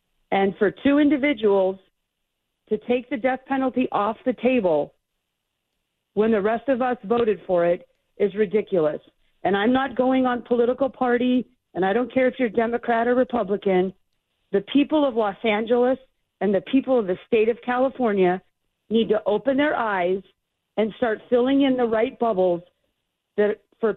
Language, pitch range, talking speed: English, 205-260 Hz, 160 wpm